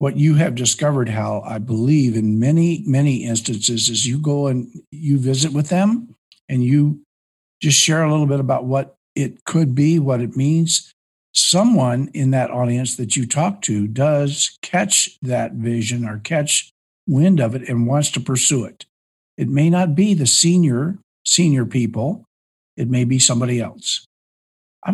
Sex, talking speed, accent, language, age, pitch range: male, 170 wpm, American, English, 50-69, 120-155 Hz